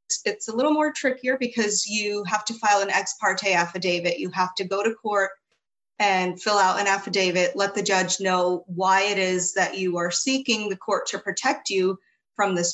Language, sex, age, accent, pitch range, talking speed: English, female, 30-49, American, 180-220 Hz, 205 wpm